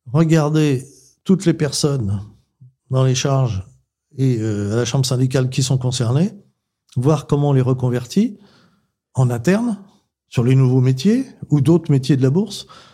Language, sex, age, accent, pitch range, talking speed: French, male, 40-59, French, 125-160 Hz, 155 wpm